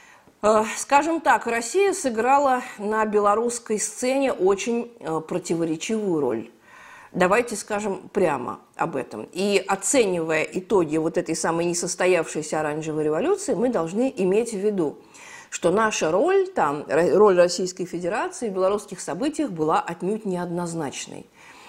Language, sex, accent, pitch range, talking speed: Russian, female, native, 180-240 Hz, 115 wpm